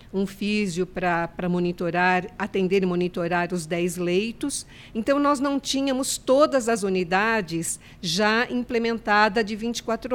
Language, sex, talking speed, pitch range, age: Portuguese, female, 120 wpm, 185-230 Hz, 50-69